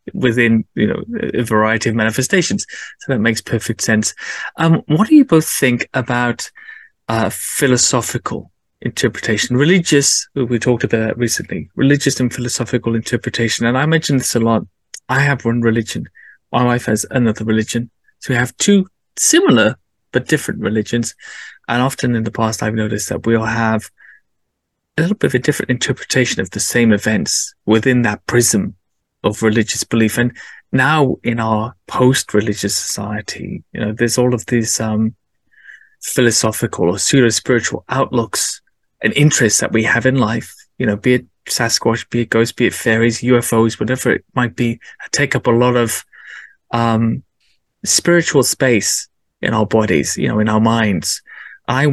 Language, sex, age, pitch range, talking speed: English, male, 20-39, 110-130 Hz, 160 wpm